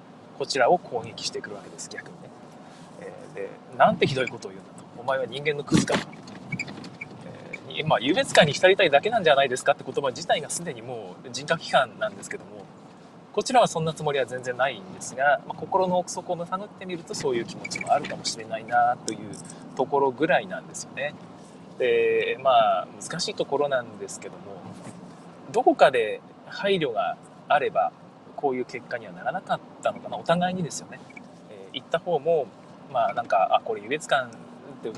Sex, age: male, 20-39